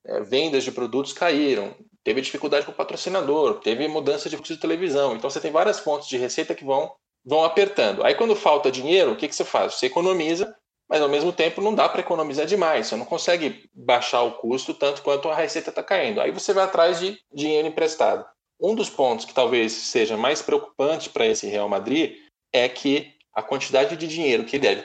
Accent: Brazilian